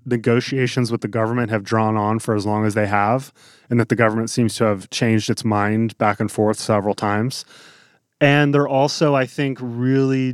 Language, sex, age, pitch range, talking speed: English, male, 30-49, 110-125 Hz, 195 wpm